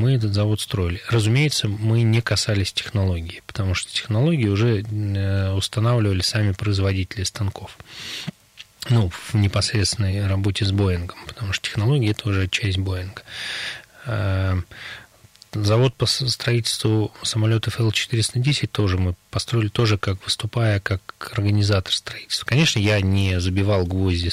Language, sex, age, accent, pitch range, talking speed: Russian, male, 20-39, native, 95-115 Hz, 120 wpm